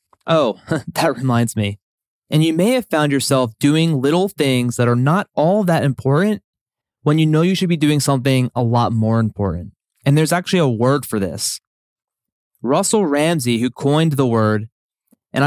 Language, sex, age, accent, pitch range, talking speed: English, male, 20-39, American, 115-150 Hz, 175 wpm